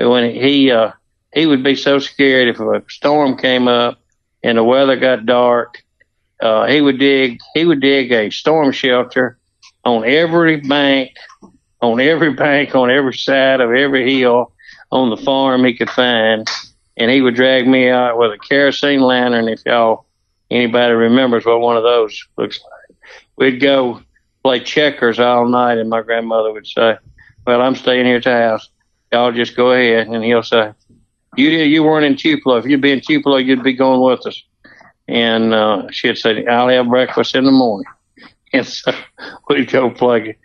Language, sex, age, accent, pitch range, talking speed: English, male, 60-79, American, 115-135 Hz, 180 wpm